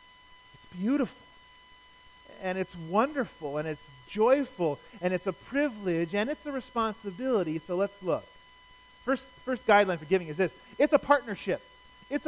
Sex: male